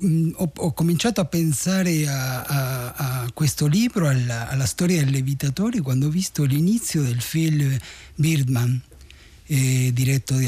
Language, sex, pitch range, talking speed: Italian, male, 135-190 Hz, 135 wpm